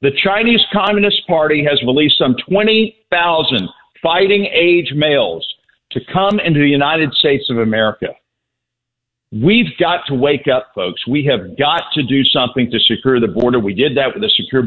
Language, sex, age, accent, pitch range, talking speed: English, male, 50-69, American, 115-150 Hz, 170 wpm